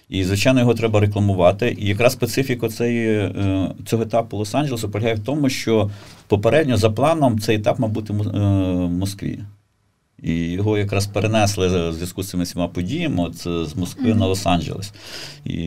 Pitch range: 85-110 Hz